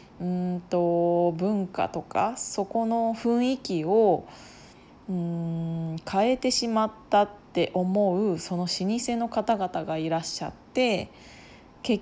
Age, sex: 20-39, female